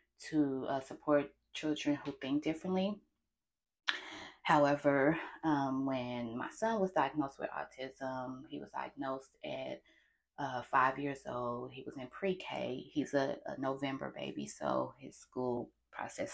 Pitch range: 130-155 Hz